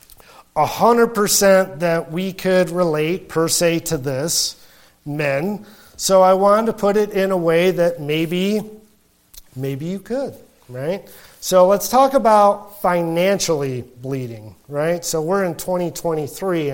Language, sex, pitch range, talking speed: English, male, 155-195 Hz, 130 wpm